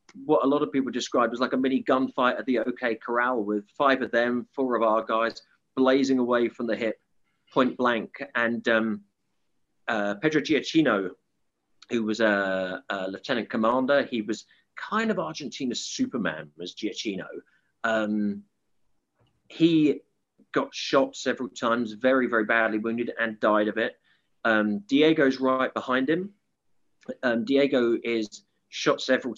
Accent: British